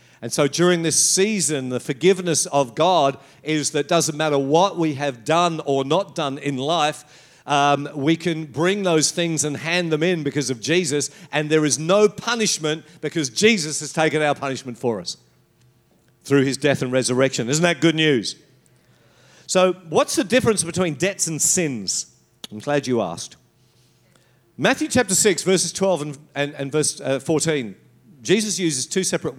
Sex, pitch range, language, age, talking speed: male, 135-175 Hz, English, 50-69, 170 wpm